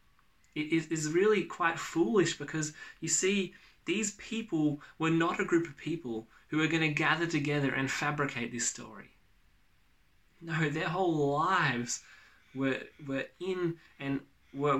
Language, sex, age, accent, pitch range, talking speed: English, male, 20-39, Australian, 130-165 Hz, 140 wpm